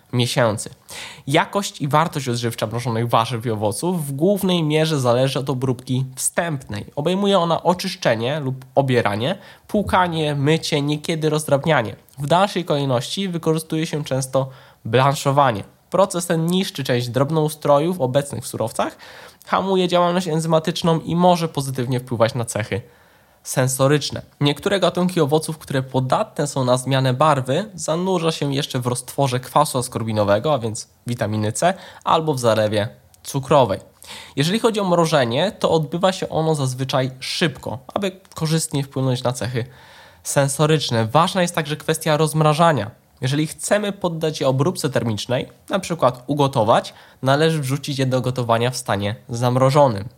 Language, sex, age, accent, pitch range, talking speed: Polish, male, 20-39, native, 125-160 Hz, 135 wpm